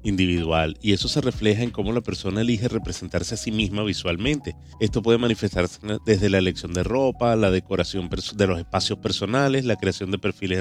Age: 30-49